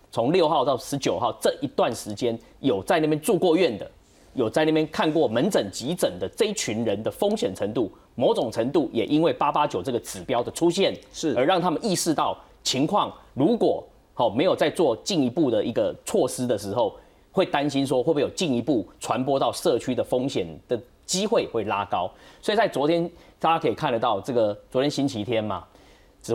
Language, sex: Chinese, male